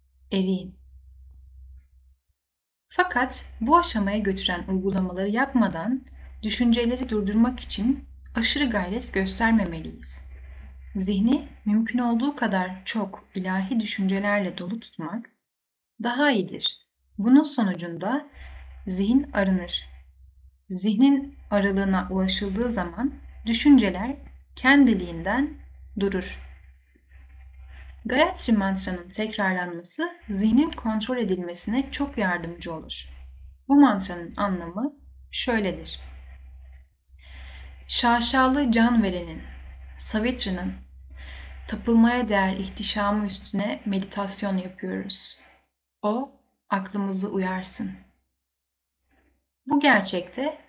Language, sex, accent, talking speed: Turkish, female, native, 75 wpm